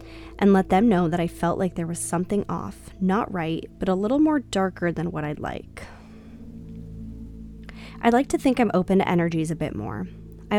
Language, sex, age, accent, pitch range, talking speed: English, female, 10-29, American, 150-195 Hz, 200 wpm